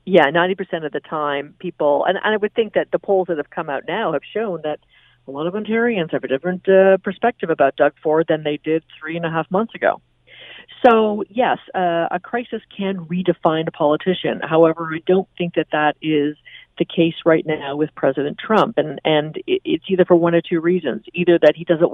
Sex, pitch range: female, 160-195 Hz